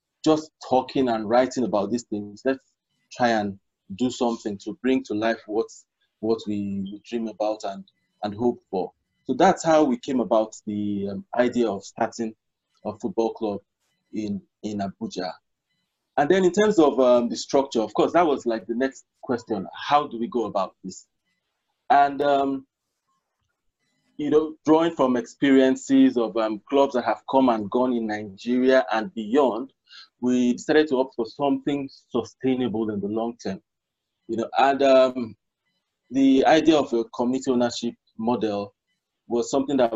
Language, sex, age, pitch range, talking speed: English, male, 20-39, 110-135 Hz, 160 wpm